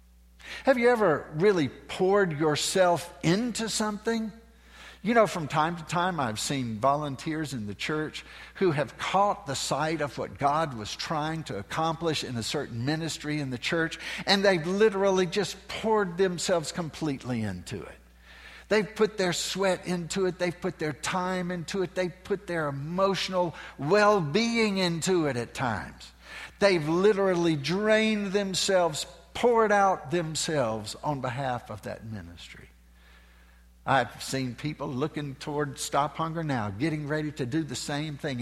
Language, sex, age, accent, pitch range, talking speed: English, male, 60-79, American, 125-195 Hz, 150 wpm